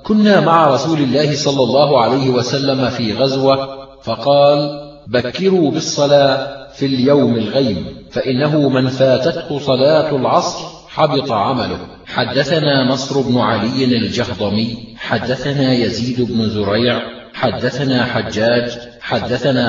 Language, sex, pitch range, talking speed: Arabic, male, 120-140 Hz, 105 wpm